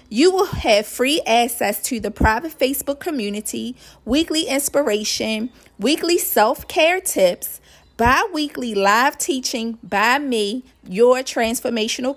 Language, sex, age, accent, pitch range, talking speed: English, female, 40-59, American, 200-265 Hz, 110 wpm